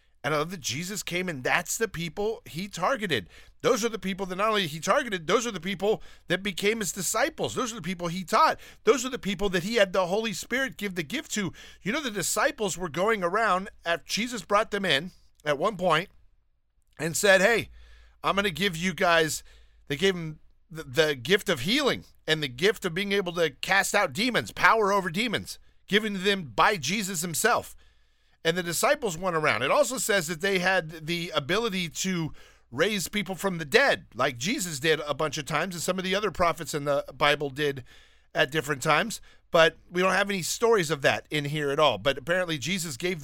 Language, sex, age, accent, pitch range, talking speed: English, male, 50-69, American, 160-205 Hz, 210 wpm